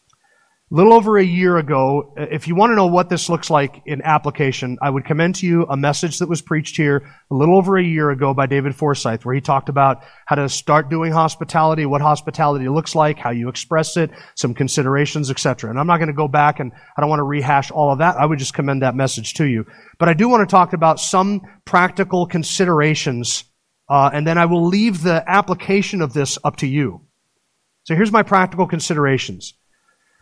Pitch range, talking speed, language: 145-185 Hz, 215 wpm, English